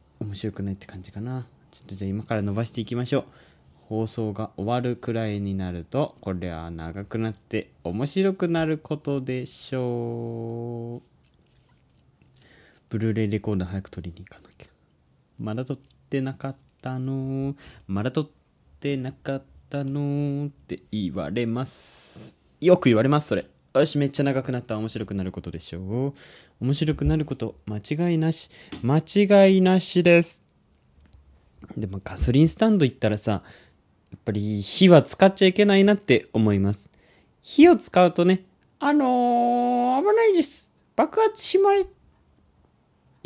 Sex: male